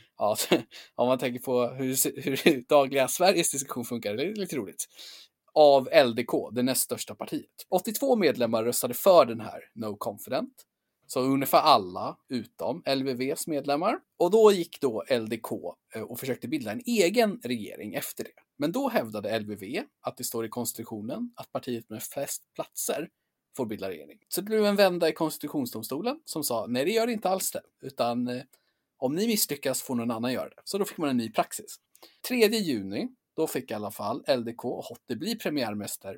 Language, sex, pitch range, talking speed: Swedish, male, 125-195 Hz, 180 wpm